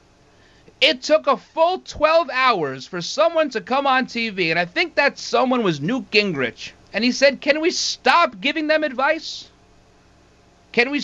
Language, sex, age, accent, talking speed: English, male, 40-59, American, 170 wpm